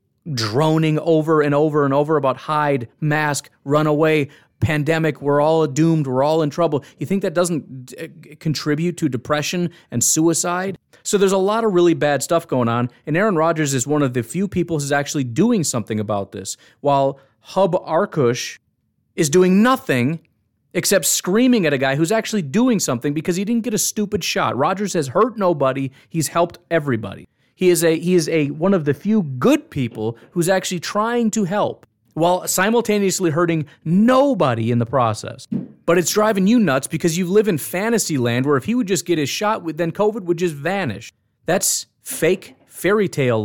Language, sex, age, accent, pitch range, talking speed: English, male, 30-49, American, 140-185 Hz, 185 wpm